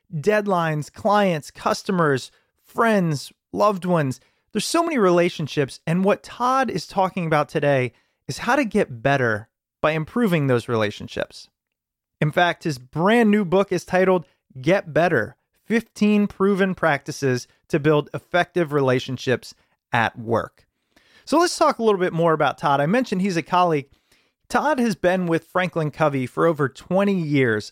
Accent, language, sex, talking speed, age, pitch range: American, English, male, 150 wpm, 30-49, 140-195 Hz